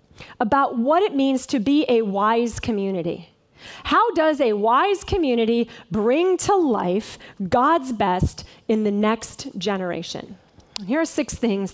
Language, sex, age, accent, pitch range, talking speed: English, female, 30-49, American, 235-315 Hz, 140 wpm